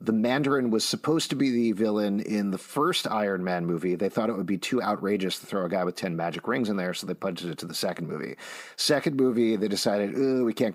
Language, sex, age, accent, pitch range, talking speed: English, male, 40-59, American, 90-110 Hz, 255 wpm